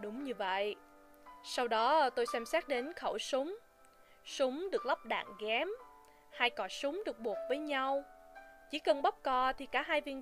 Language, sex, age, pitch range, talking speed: Vietnamese, female, 20-39, 230-300 Hz, 180 wpm